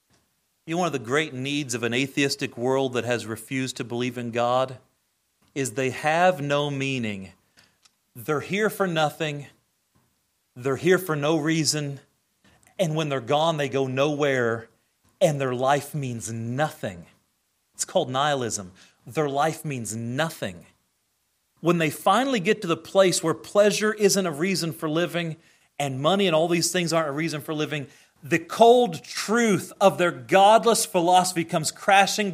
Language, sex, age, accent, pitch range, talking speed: English, male, 40-59, American, 135-190 Hz, 160 wpm